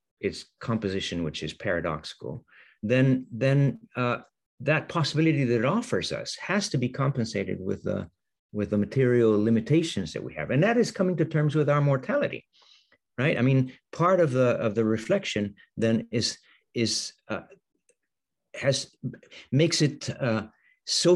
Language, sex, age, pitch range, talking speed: English, male, 50-69, 105-140 Hz, 155 wpm